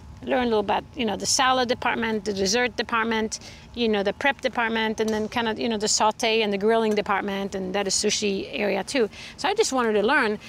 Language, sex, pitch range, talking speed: English, female, 210-265 Hz, 235 wpm